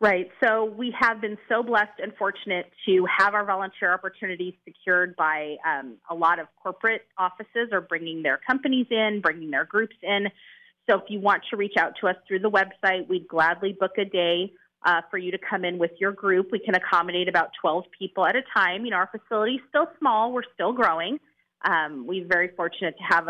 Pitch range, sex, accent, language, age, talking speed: 170-215 Hz, female, American, English, 30-49, 210 wpm